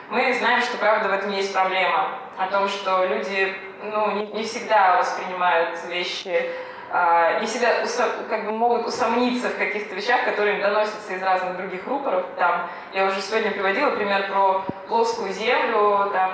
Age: 20-39